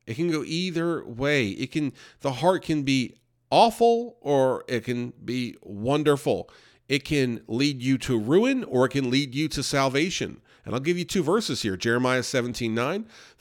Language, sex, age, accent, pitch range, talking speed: English, male, 40-59, American, 120-150 Hz, 175 wpm